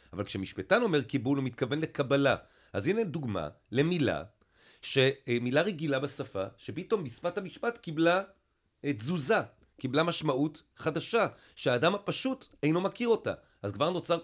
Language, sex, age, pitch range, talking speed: Hebrew, male, 40-59, 115-155 Hz, 125 wpm